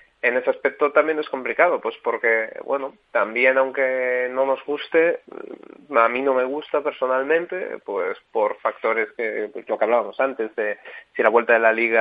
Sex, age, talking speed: male, 30-49, 180 wpm